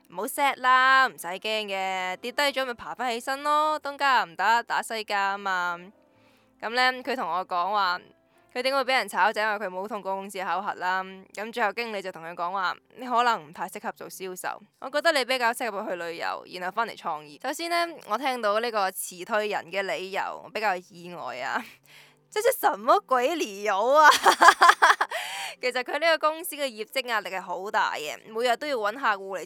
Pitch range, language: 185-250 Hz, Chinese